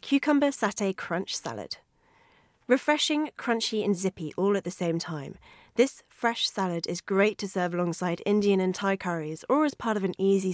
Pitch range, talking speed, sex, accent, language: 170-225 Hz, 175 wpm, female, British, English